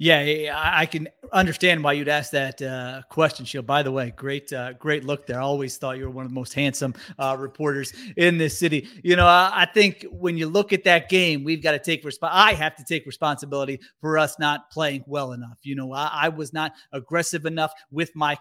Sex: male